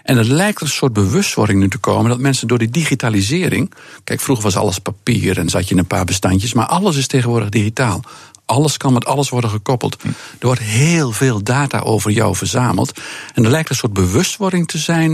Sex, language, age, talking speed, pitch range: male, Dutch, 50-69, 210 wpm, 105-140 Hz